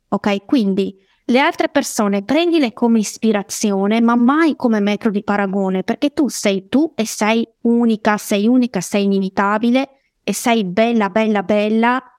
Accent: native